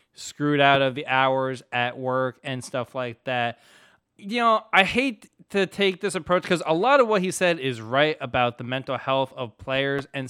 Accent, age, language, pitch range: American, 20-39, English, 145-205 Hz